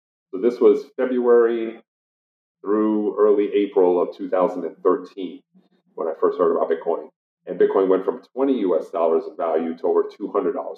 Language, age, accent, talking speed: English, 40-59, American, 150 wpm